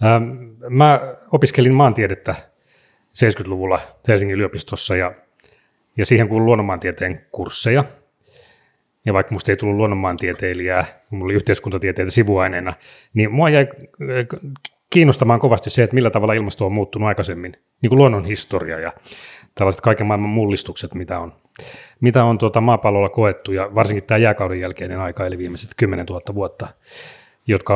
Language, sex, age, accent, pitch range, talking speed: Finnish, male, 30-49, native, 95-120 Hz, 140 wpm